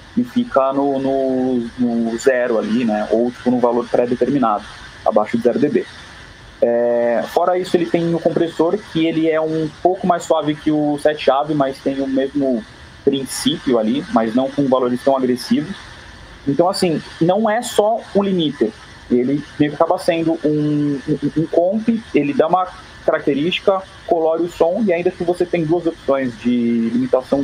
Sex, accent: male, Brazilian